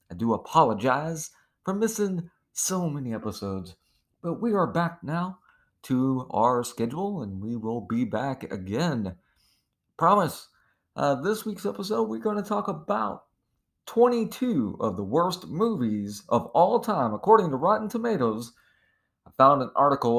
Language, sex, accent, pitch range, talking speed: English, male, American, 100-155 Hz, 145 wpm